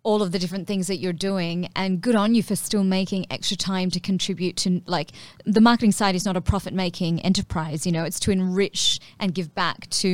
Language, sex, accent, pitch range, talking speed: English, female, Australian, 180-215 Hz, 230 wpm